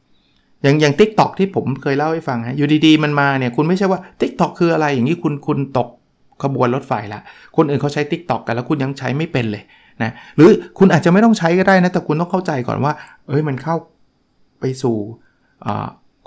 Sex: male